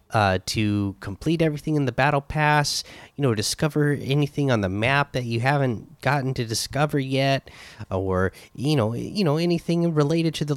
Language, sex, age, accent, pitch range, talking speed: English, male, 30-49, American, 105-135 Hz, 175 wpm